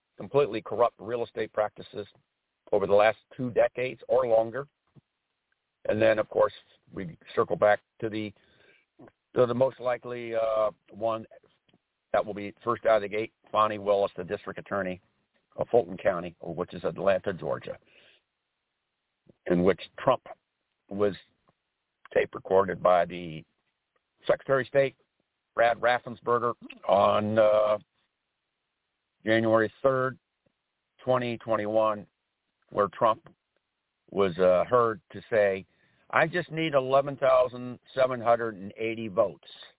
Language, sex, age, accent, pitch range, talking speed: English, male, 60-79, American, 100-120 Hz, 115 wpm